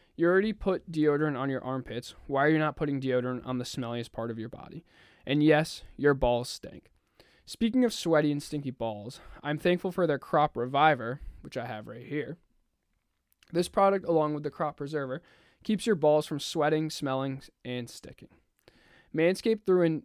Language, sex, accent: English, male, American